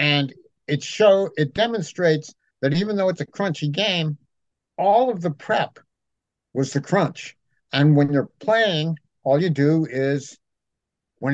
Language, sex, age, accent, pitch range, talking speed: English, male, 60-79, American, 140-185 Hz, 150 wpm